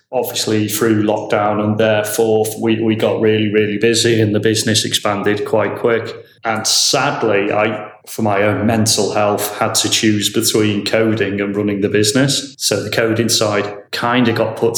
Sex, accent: male, British